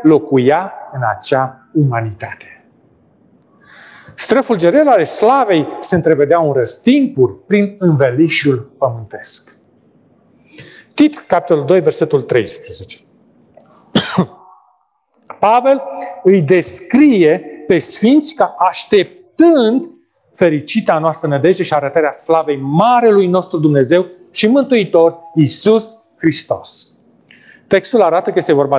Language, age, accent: Romanian, 40-59, native